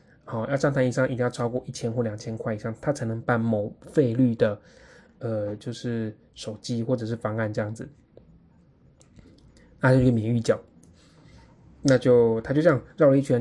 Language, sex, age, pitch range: Chinese, male, 20-39, 115-135 Hz